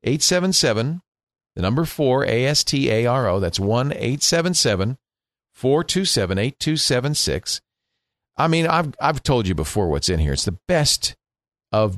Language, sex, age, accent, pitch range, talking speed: English, male, 50-69, American, 105-145 Hz, 190 wpm